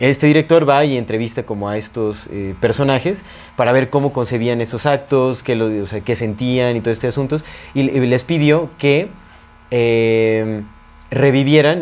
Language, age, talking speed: Spanish, 20-39, 160 wpm